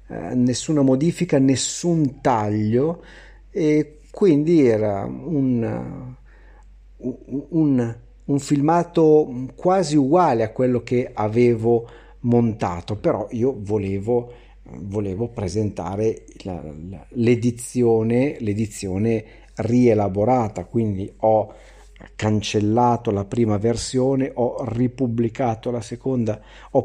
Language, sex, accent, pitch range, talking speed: Italian, male, native, 110-130 Hz, 80 wpm